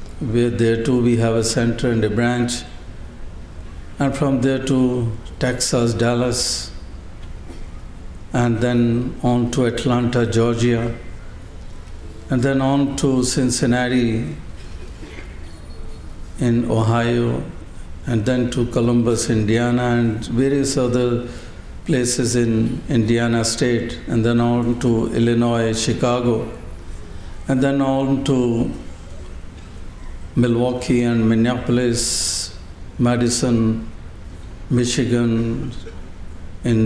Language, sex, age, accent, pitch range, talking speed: Hindi, male, 60-79, native, 95-120 Hz, 95 wpm